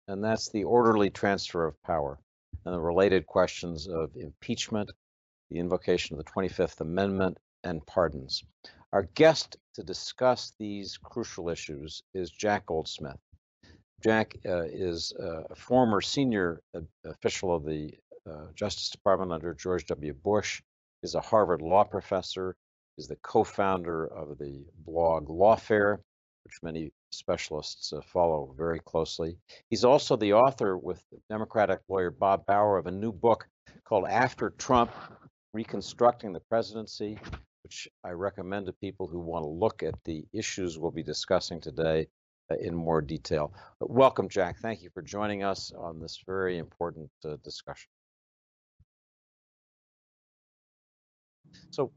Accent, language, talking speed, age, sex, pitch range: American, English, 140 wpm, 60-79, male, 80-105 Hz